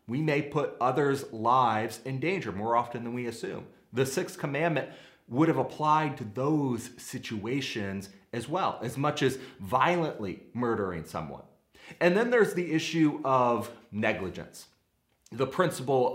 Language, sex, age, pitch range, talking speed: English, male, 30-49, 105-140 Hz, 140 wpm